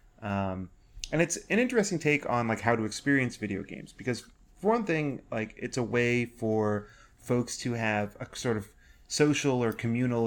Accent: American